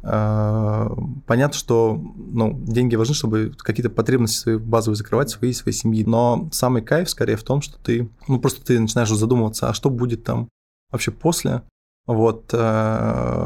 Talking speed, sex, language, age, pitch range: 150 wpm, male, Russian, 20-39, 110-120 Hz